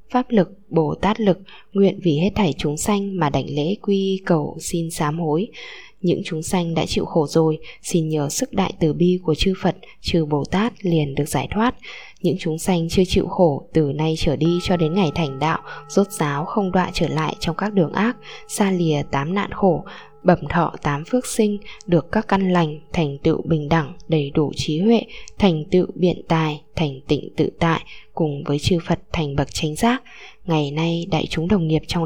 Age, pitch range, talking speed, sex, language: 10-29, 160-200 Hz, 210 wpm, female, Vietnamese